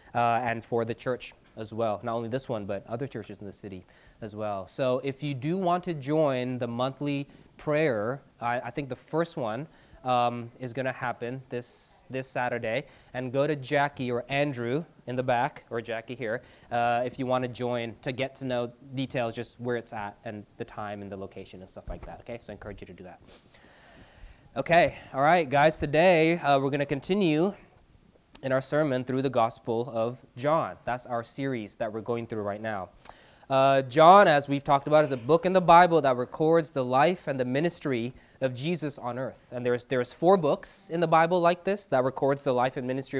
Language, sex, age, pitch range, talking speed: English, male, 20-39, 120-150 Hz, 215 wpm